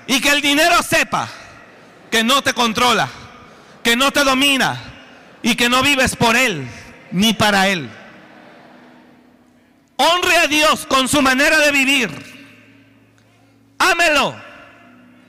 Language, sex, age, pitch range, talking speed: Spanish, male, 50-69, 195-310 Hz, 120 wpm